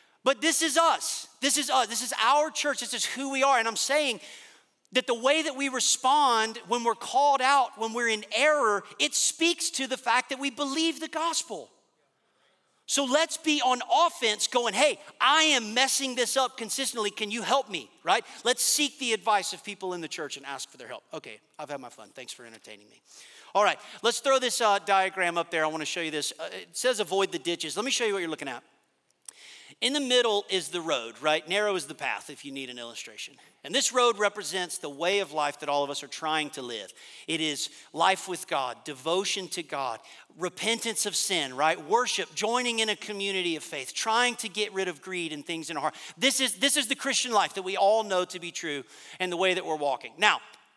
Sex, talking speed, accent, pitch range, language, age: male, 230 wpm, American, 175-270 Hz, English, 40-59